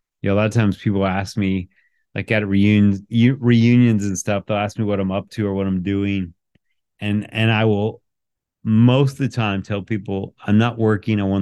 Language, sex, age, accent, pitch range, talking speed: English, male, 30-49, American, 95-115 Hz, 215 wpm